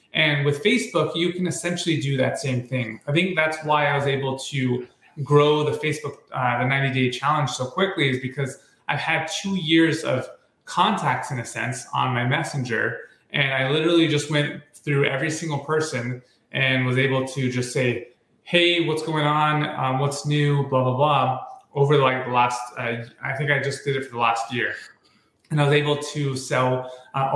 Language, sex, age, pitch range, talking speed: English, male, 20-39, 130-160 Hz, 195 wpm